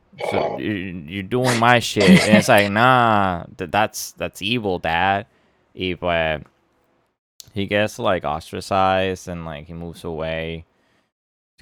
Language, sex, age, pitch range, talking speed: English, male, 20-39, 85-130 Hz, 125 wpm